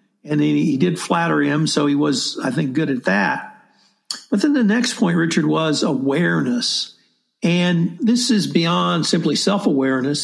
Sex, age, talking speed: male, 60-79, 165 wpm